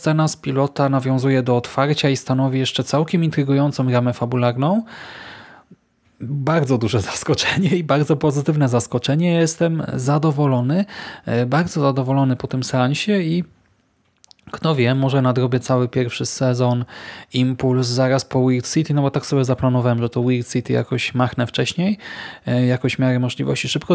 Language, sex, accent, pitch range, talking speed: Polish, male, native, 125-145 Hz, 145 wpm